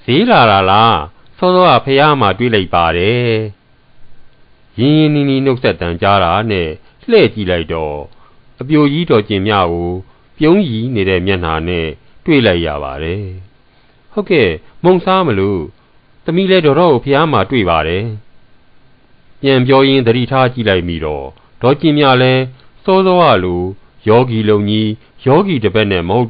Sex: male